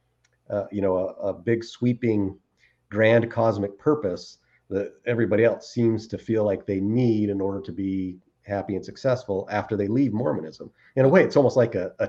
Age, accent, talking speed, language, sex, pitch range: 40-59, American, 190 wpm, English, male, 100-125 Hz